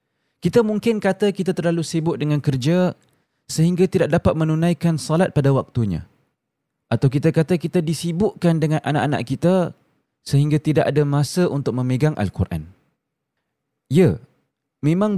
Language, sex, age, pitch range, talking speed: Malay, male, 20-39, 135-170 Hz, 125 wpm